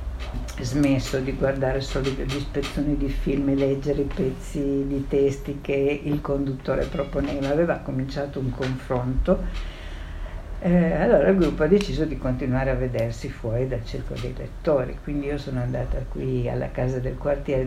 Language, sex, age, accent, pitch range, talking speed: Italian, female, 60-79, native, 130-155 Hz, 155 wpm